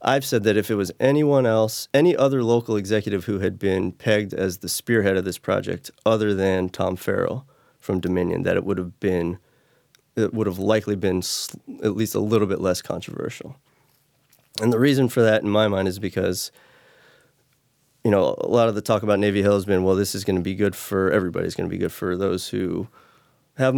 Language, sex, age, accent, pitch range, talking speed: English, male, 30-49, American, 95-115 Hz, 210 wpm